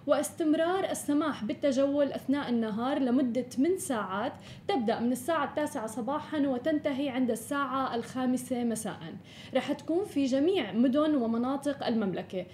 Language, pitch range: Arabic, 240-295 Hz